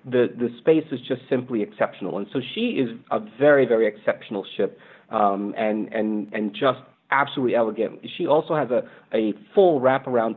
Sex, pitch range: male, 110-145 Hz